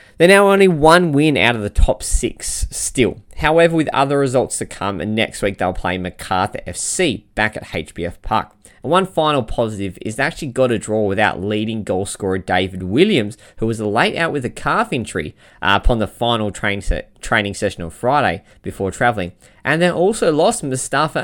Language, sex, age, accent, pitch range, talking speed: English, male, 20-39, Australian, 100-130 Hz, 195 wpm